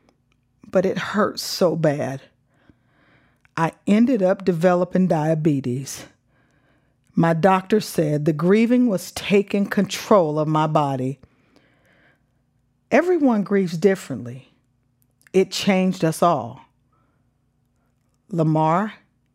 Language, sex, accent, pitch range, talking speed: English, female, American, 135-215 Hz, 90 wpm